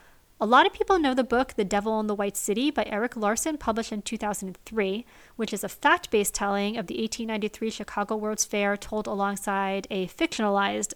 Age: 30-49